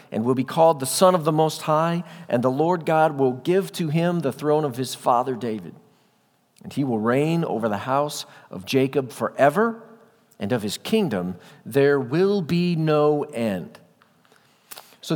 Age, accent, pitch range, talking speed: 50-69, American, 145-185 Hz, 175 wpm